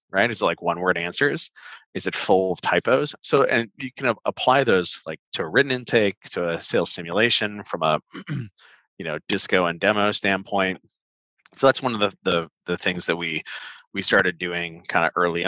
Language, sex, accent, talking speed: English, male, American, 195 wpm